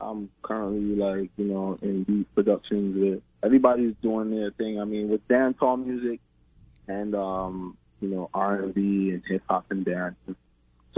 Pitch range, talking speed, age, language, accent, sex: 80-100 Hz, 160 wpm, 20-39, English, American, male